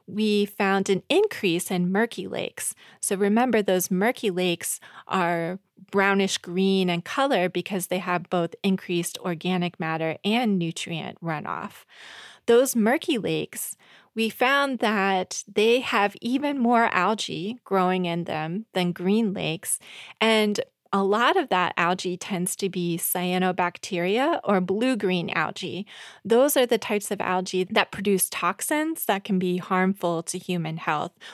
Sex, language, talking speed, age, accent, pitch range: female, English, 140 wpm, 20-39, American, 180-220 Hz